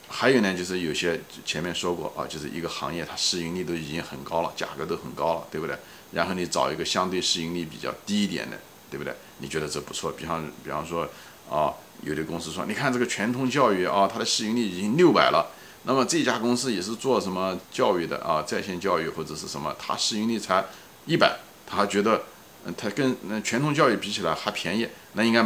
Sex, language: male, Chinese